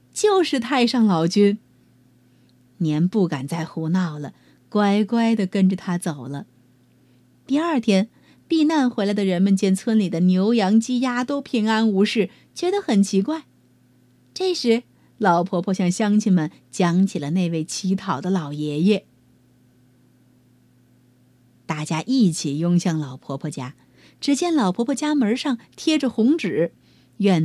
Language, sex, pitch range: Chinese, female, 155-230 Hz